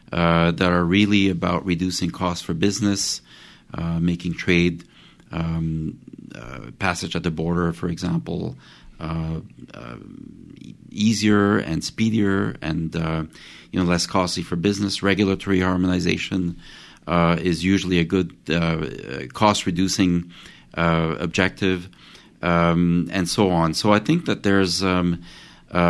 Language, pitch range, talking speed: English, 85-95 Hz, 130 wpm